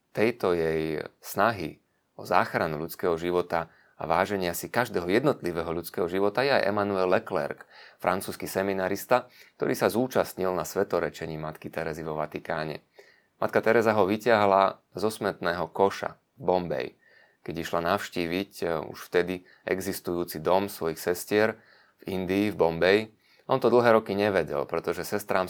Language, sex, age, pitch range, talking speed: Slovak, male, 30-49, 85-100 Hz, 135 wpm